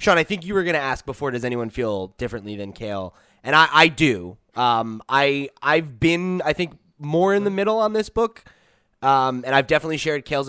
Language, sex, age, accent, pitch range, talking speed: English, male, 20-39, American, 115-160 Hz, 225 wpm